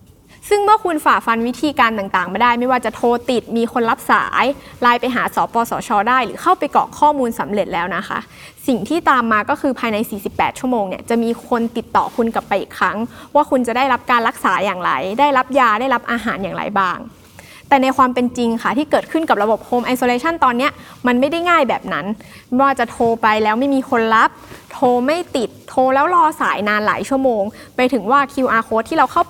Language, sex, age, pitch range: Thai, female, 20-39, 215-275 Hz